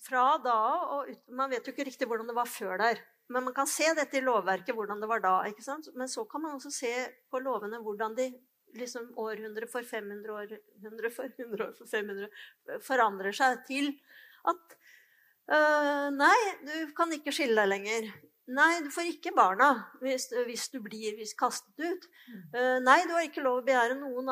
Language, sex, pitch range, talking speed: English, female, 230-295 Hz, 190 wpm